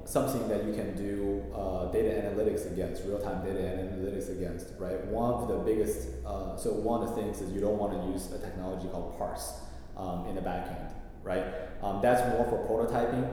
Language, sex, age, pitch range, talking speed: English, male, 20-39, 65-105 Hz, 205 wpm